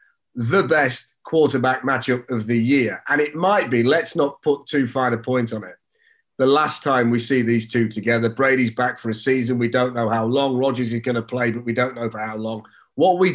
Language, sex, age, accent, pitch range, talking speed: English, male, 30-49, British, 120-145 Hz, 235 wpm